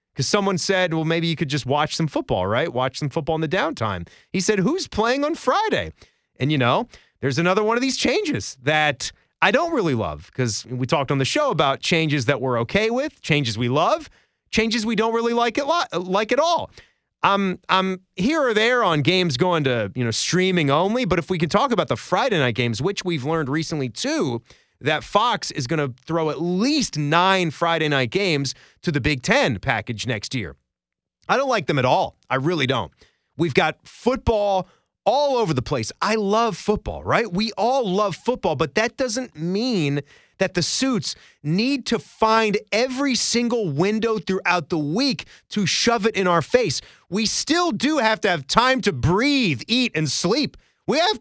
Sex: male